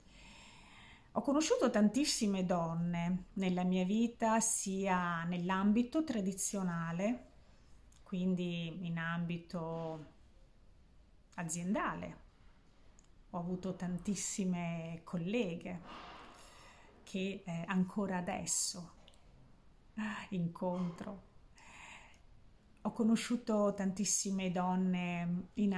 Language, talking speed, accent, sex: Italian, 65 wpm, native, female